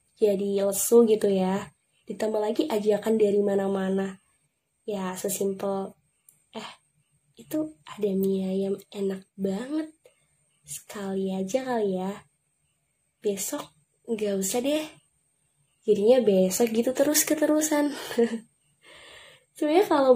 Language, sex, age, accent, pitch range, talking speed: Indonesian, female, 10-29, native, 185-230 Hz, 100 wpm